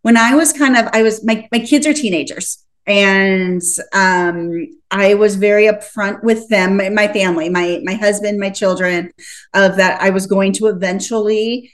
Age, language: 30-49, English